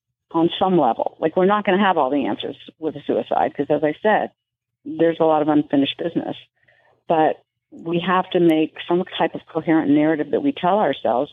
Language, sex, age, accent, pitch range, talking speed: English, female, 50-69, American, 160-205 Hz, 205 wpm